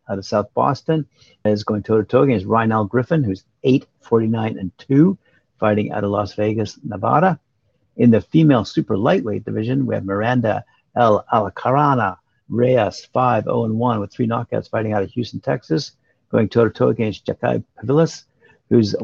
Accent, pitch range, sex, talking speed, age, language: American, 105-130 Hz, male, 165 wpm, 50-69, English